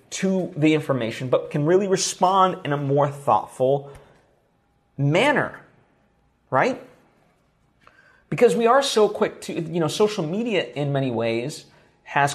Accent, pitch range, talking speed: American, 130-155 Hz, 130 wpm